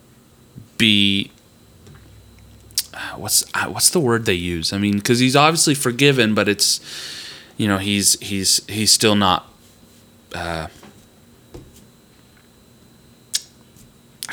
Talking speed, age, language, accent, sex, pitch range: 105 wpm, 30-49, English, American, male, 95-120 Hz